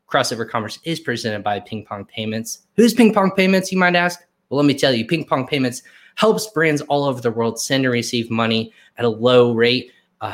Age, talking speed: 20-39, 220 wpm